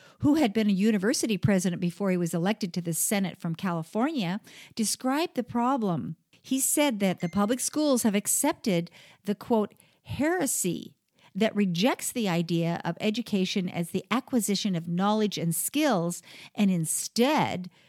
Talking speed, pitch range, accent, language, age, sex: 150 wpm, 180-245 Hz, American, English, 50-69, female